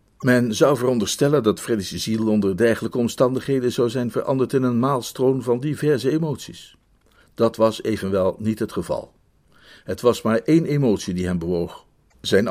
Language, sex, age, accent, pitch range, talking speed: Dutch, male, 50-69, Dutch, 105-145 Hz, 160 wpm